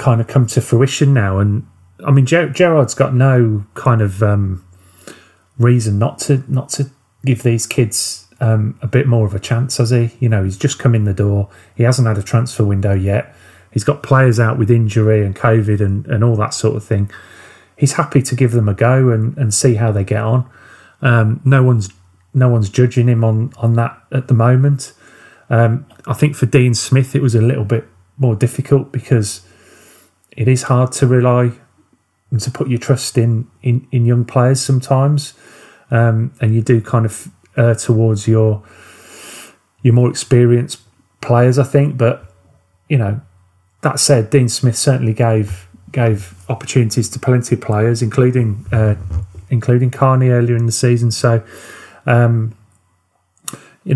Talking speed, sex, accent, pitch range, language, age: 180 wpm, male, British, 110-130 Hz, English, 30-49